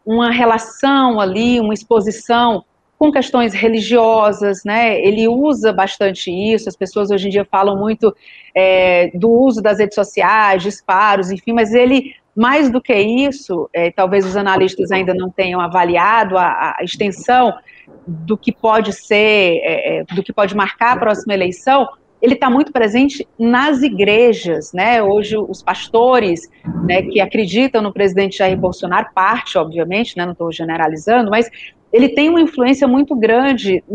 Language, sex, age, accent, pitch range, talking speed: Portuguese, female, 40-59, Brazilian, 195-245 Hz, 150 wpm